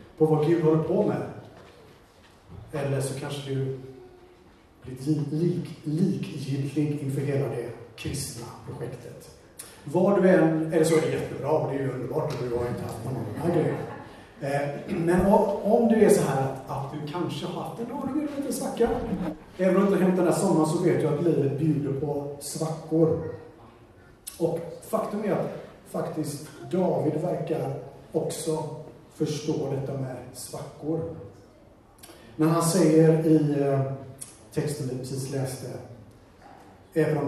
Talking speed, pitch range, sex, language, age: 145 wpm, 130-165 Hz, male, Swedish, 40-59